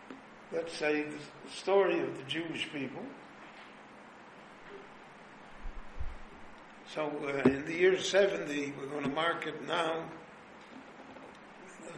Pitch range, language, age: 150-175 Hz, English, 60-79